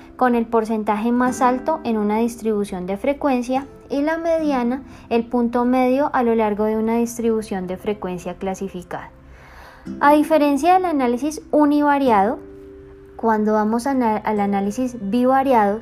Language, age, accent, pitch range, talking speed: English, 10-29, Colombian, 215-260 Hz, 135 wpm